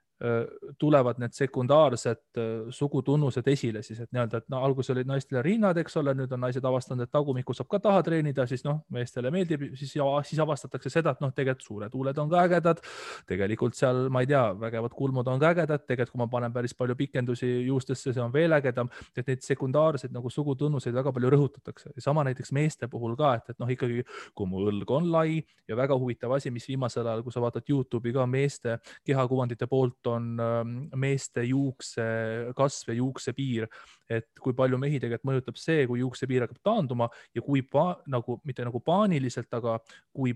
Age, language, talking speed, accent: 20-39, English, 190 wpm, Finnish